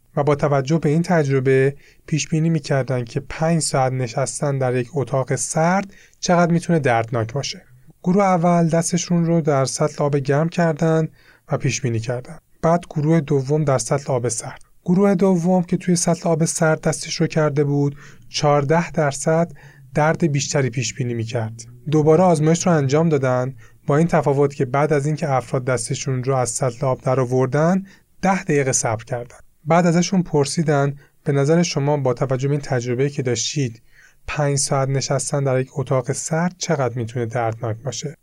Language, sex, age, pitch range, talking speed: Persian, male, 30-49, 130-160 Hz, 165 wpm